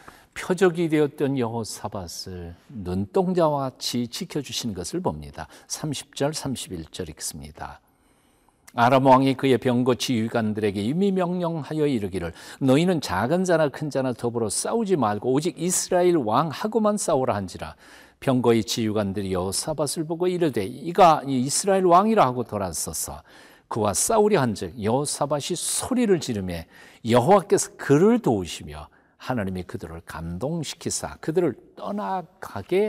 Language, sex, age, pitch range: Korean, male, 50-69, 95-155 Hz